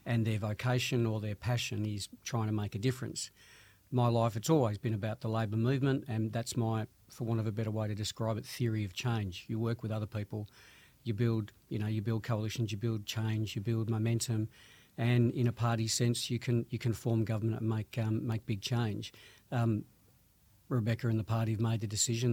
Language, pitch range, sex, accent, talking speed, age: English, 110-120 Hz, male, Australian, 215 wpm, 50-69